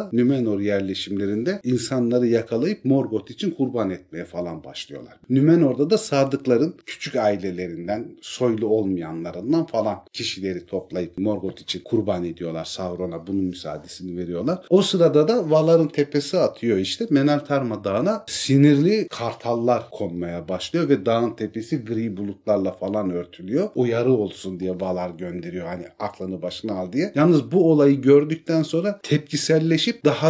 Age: 40-59